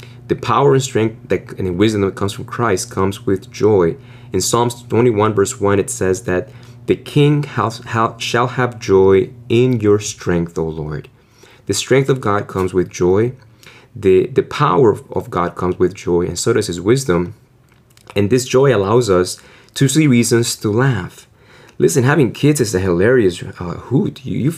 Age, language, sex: 30-49, English, male